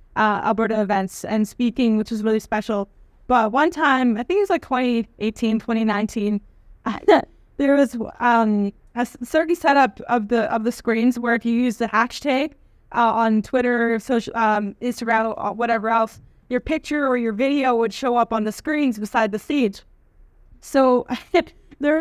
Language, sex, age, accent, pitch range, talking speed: English, female, 20-39, American, 230-280 Hz, 170 wpm